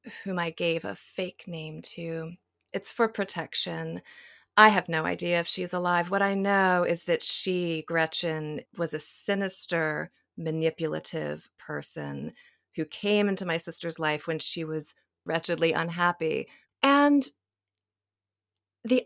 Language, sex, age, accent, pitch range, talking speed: English, female, 30-49, American, 165-220 Hz, 130 wpm